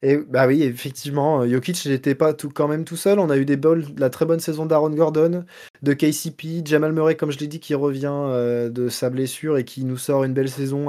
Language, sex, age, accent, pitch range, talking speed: French, male, 20-39, French, 120-145 Hz, 240 wpm